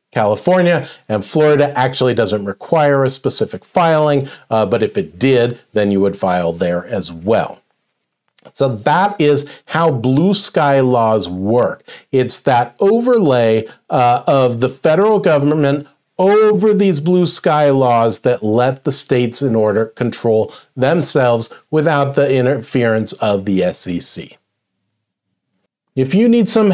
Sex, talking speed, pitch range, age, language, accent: male, 135 wpm, 130-185 Hz, 40-59, English, American